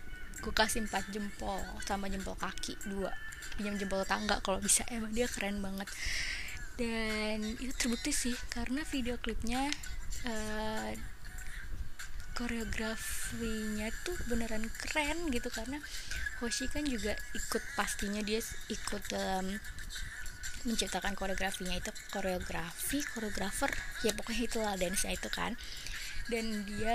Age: 20-39